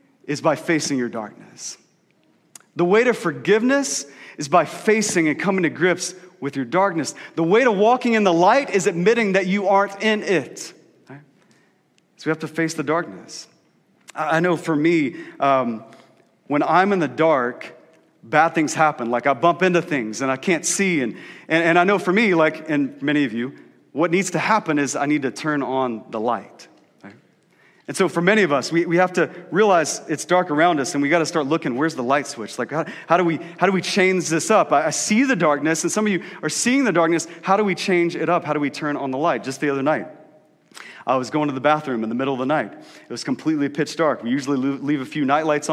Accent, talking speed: American, 230 wpm